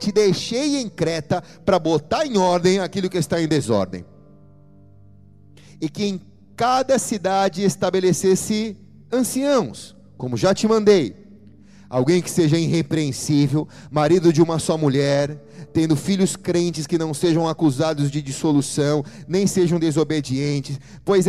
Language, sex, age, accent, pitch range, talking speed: Portuguese, male, 30-49, Brazilian, 165-205 Hz, 130 wpm